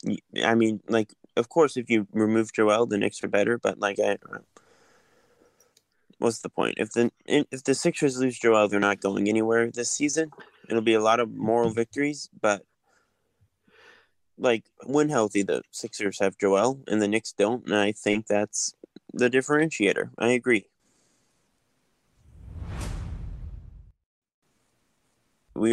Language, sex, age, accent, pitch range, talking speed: English, male, 20-39, American, 105-120 Hz, 140 wpm